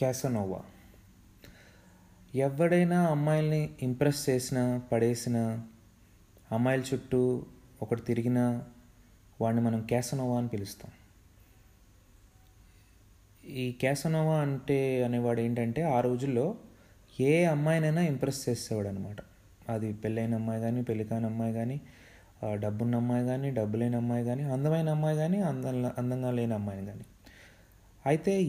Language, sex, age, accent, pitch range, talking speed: Telugu, male, 20-39, native, 105-140 Hz, 105 wpm